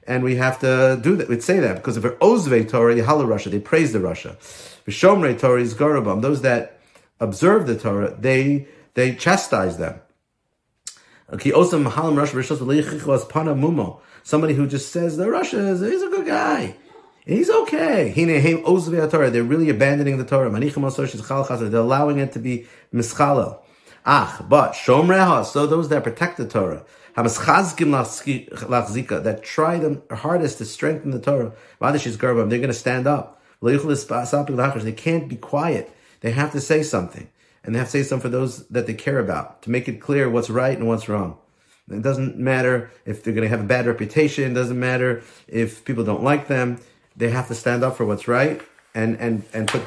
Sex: male